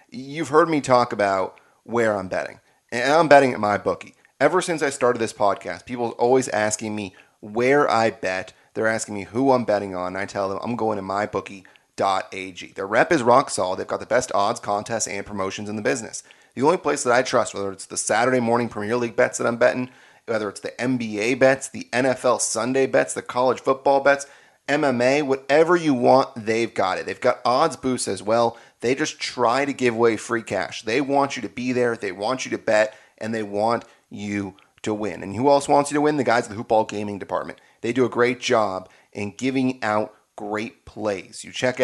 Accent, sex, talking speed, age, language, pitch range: American, male, 220 wpm, 30-49, English, 105-130 Hz